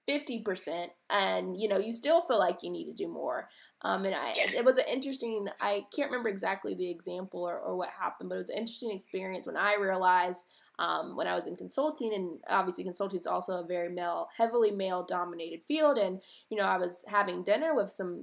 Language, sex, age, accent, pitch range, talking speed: English, female, 20-39, American, 190-285 Hz, 210 wpm